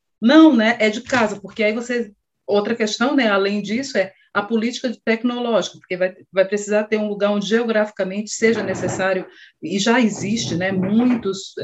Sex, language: female, Portuguese